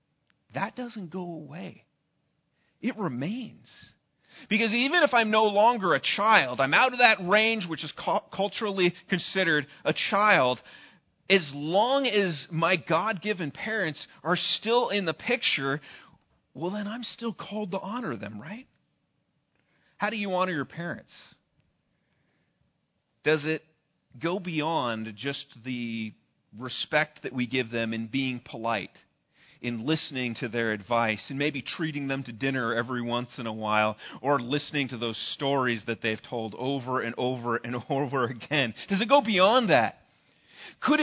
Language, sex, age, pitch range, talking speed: English, male, 40-59, 130-205 Hz, 150 wpm